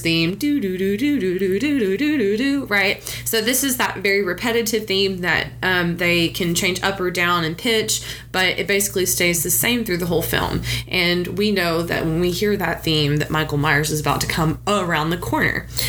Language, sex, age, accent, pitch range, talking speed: English, female, 20-39, American, 160-200 Hz, 210 wpm